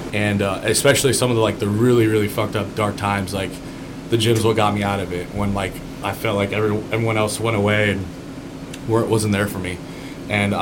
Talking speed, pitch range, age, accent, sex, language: 215 wpm, 100-120 Hz, 20-39, American, male, English